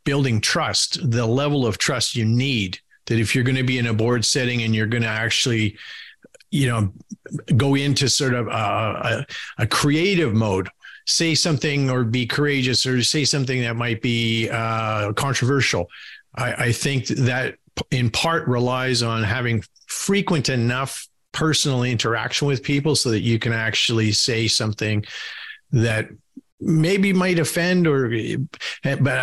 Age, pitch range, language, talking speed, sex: 50-69, 115-145 Hz, English, 155 wpm, male